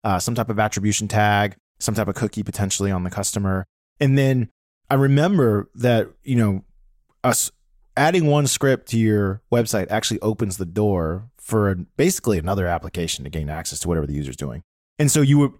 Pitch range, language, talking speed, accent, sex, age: 95-120 Hz, English, 185 wpm, American, male, 20-39